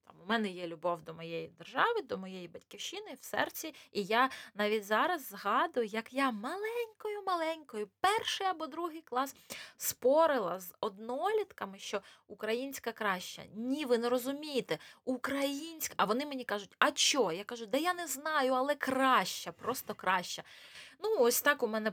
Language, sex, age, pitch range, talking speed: Ukrainian, female, 20-39, 205-295 Hz, 155 wpm